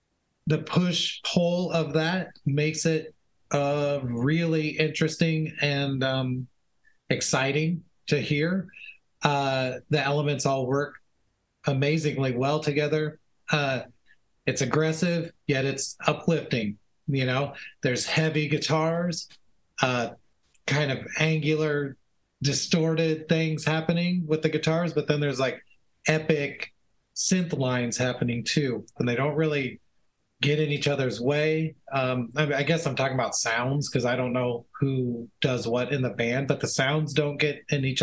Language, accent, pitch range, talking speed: English, American, 135-160 Hz, 135 wpm